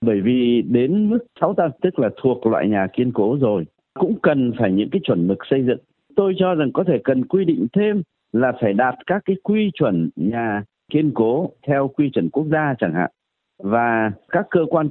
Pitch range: 120-160 Hz